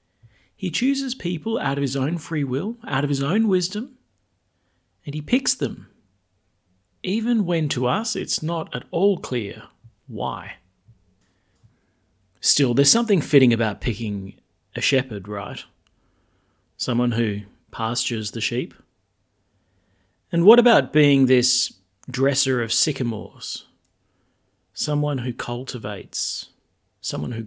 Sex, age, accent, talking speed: male, 40-59, Australian, 120 wpm